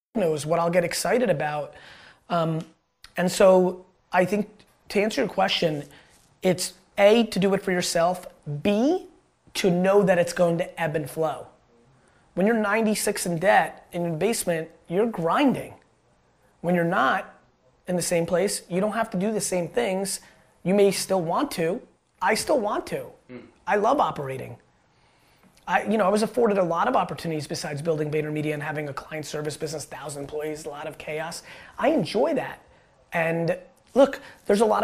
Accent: American